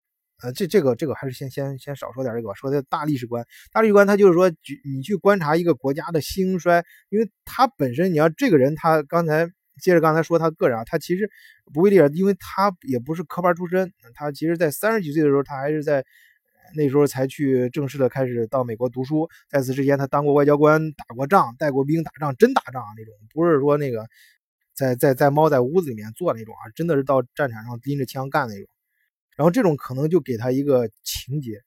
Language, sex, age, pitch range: Chinese, male, 20-39, 130-170 Hz